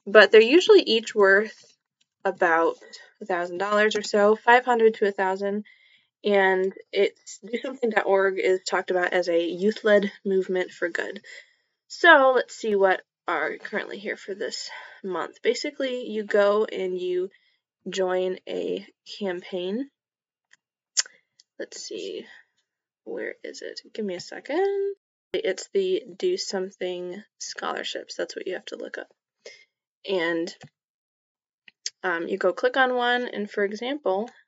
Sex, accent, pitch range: female, American, 195-300 Hz